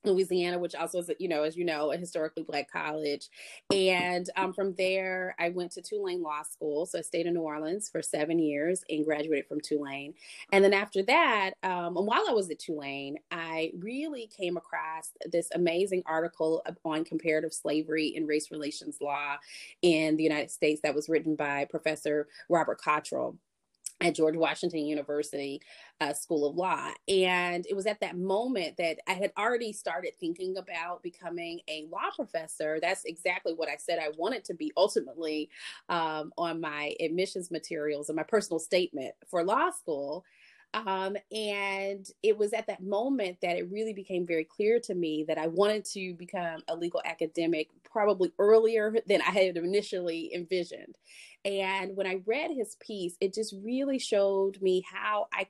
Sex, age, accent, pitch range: female, 30-49, American, 155-195 Hz